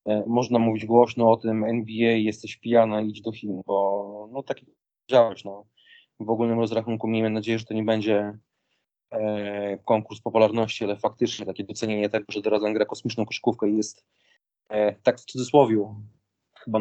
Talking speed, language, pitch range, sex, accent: 160 wpm, Polish, 110-120 Hz, male, native